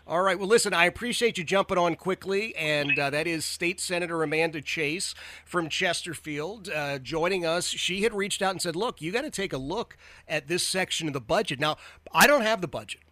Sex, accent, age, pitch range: male, American, 30-49, 125-170 Hz